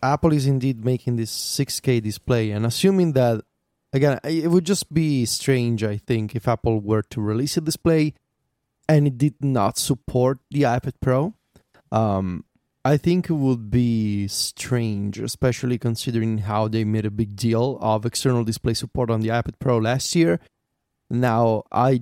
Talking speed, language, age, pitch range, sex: 165 wpm, English, 20-39, 110-135 Hz, male